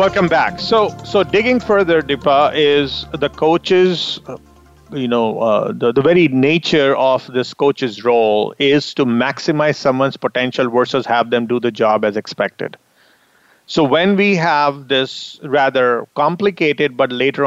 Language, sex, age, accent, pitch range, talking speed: English, male, 40-59, Indian, 130-165 Hz, 150 wpm